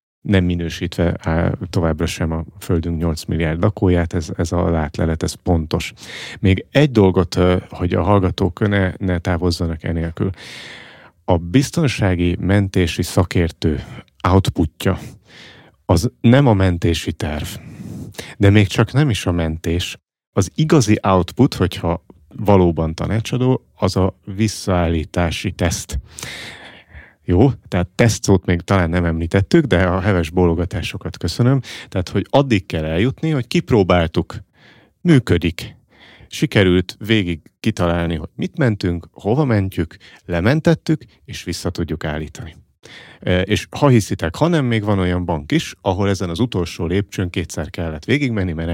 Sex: male